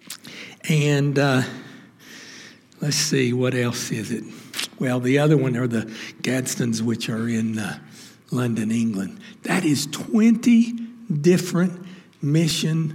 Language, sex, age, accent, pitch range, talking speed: English, male, 60-79, American, 130-185 Hz, 120 wpm